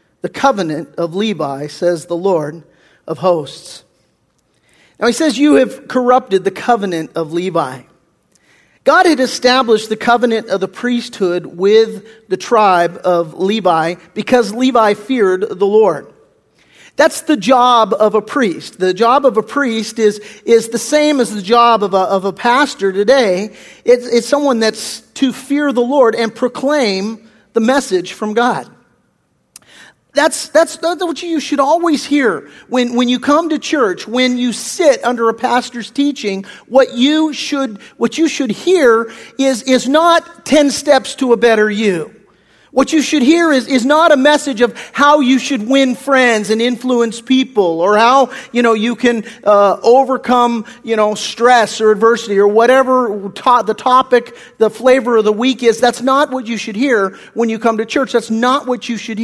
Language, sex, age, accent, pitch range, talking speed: English, male, 40-59, American, 215-265 Hz, 170 wpm